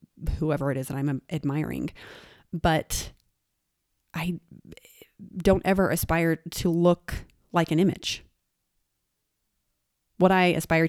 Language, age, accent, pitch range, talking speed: English, 30-49, American, 150-180 Hz, 105 wpm